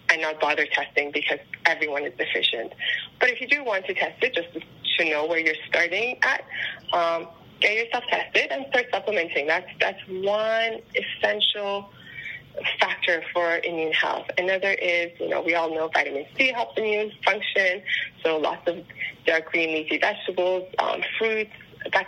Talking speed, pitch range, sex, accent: 165 wpm, 170-215 Hz, female, American